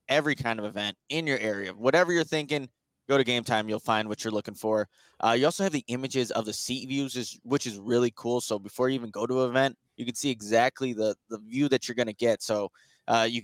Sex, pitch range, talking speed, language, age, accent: male, 110-130 Hz, 250 wpm, English, 20-39, American